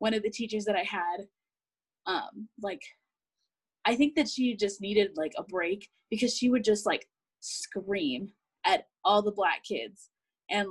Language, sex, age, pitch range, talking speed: English, female, 20-39, 200-230 Hz, 170 wpm